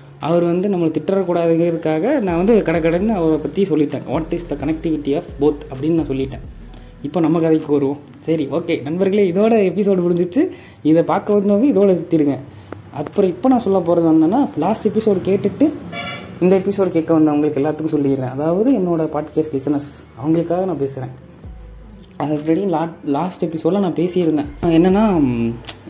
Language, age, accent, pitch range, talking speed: Tamil, 20-39, native, 140-175 Hz, 150 wpm